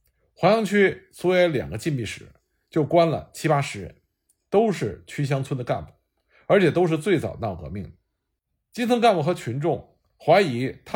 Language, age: Chinese, 50-69